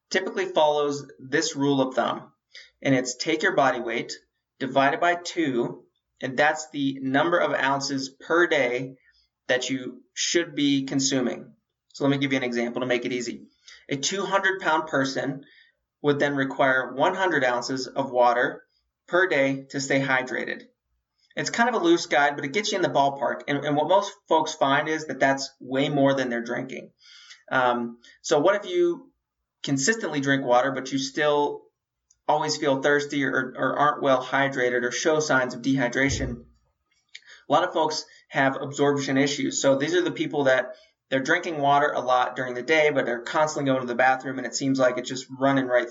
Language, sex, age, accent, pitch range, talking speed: English, male, 30-49, American, 130-155 Hz, 185 wpm